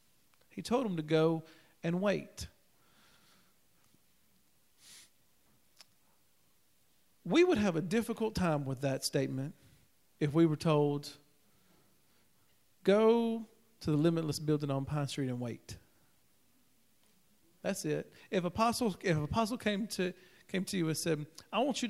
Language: English